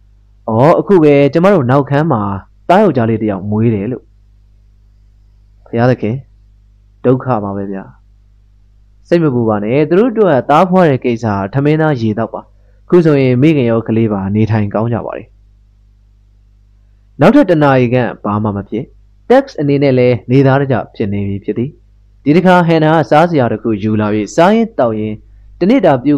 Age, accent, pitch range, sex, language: 20-39, Indian, 100-135 Hz, male, English